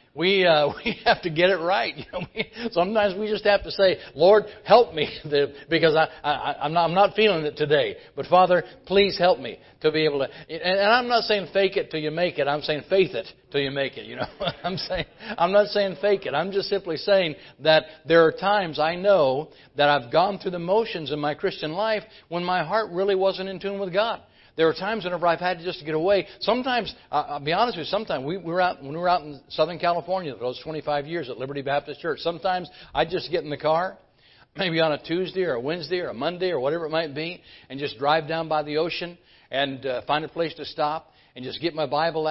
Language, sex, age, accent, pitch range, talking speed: English, male, 60-79, American, 150-190 Hz, 245 wpm